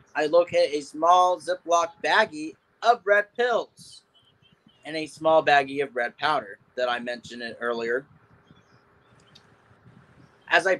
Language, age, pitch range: English, 30-49, 140-190 Hz